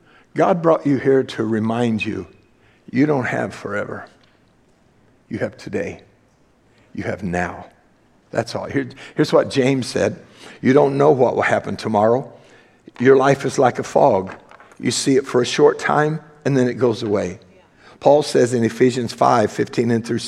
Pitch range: 115-155 Hz